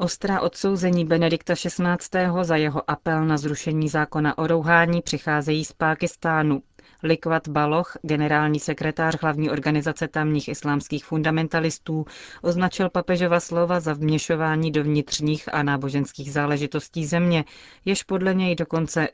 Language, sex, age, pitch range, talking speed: Czech, female, 30-49, 150-170 Hz, 120 wpm